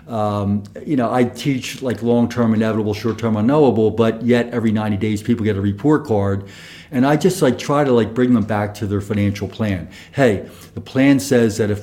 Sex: male